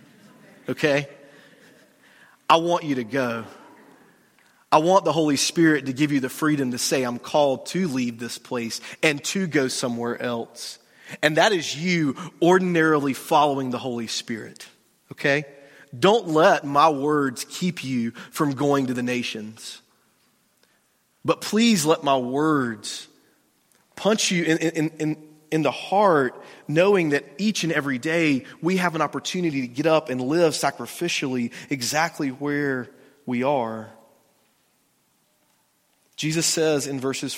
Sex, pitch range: male, 125-160 Hz